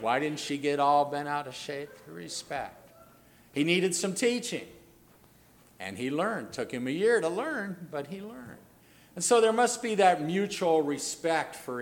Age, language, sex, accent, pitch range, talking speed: 50-69, English, male, American, 130-180 Hz, 190 wpm